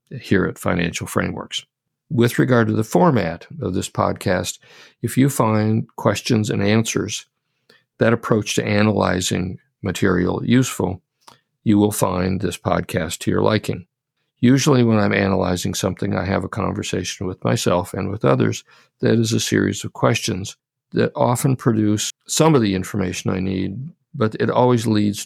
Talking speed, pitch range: 155 wpm, 95-115 Hz